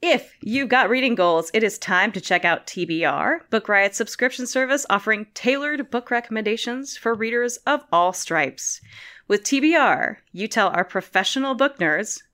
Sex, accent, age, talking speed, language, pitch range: female, American, 30-49, 160 wpm, English, 185-260 Hz